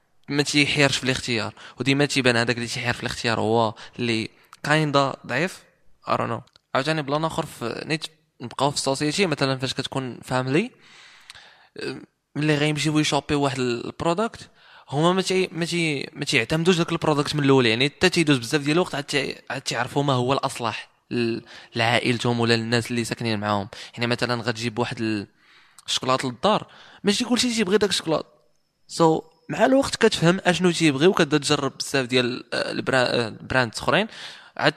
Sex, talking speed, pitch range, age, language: male, 150 wpm, 130-165 Hz, 20-39, Arabic